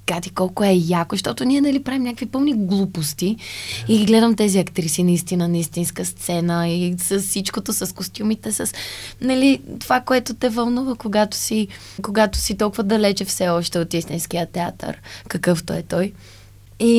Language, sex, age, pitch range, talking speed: Bulgarian, female, 20-39, 175-220 Hz, 155 wpm